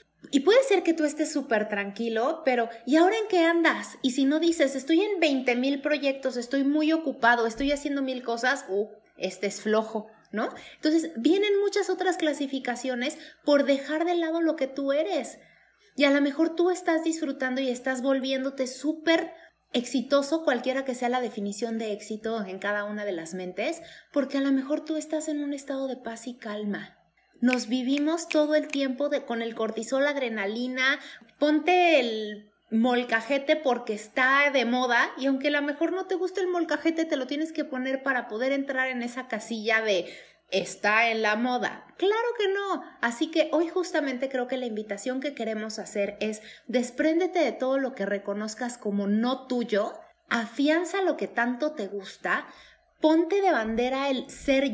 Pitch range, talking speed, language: 230-310 Hz, 180 wpm, Spanish